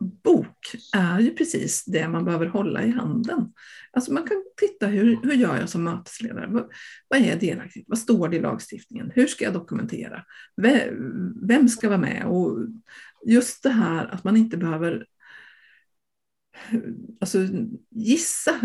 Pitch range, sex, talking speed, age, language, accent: 200-245 Hz, female, 150 wpm, 50-69, Swedish, native